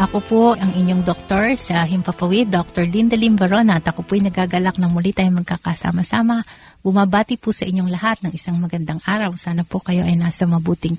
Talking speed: 180 wpm